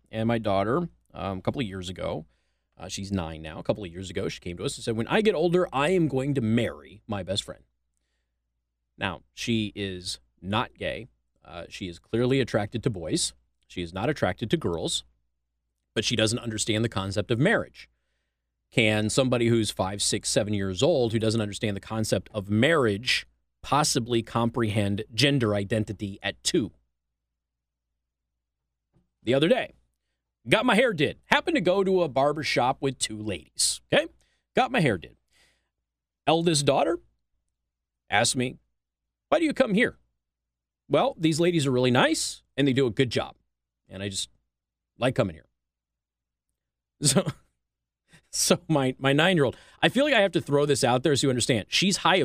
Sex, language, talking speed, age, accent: male, English, 175 wpm, 30-49, American